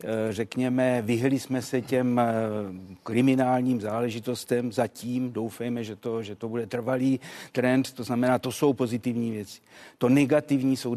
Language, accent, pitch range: Czech, native, 115-135 Hz